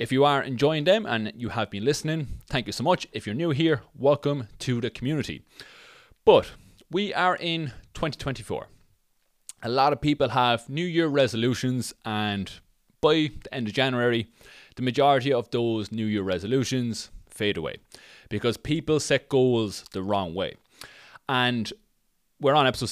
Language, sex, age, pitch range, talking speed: English, male, 30-49, 110-145 Hz, 160 wpm